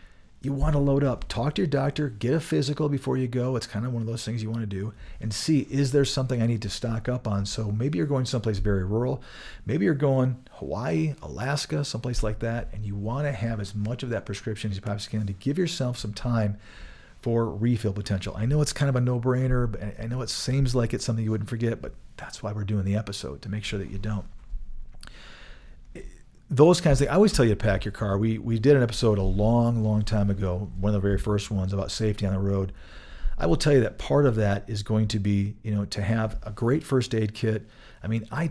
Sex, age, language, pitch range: male, 40-59, English, 100-125 Hz